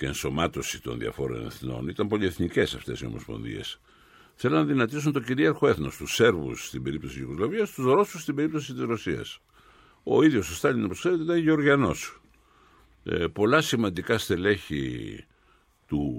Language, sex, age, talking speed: Greek, male, 60-79, 150 wpm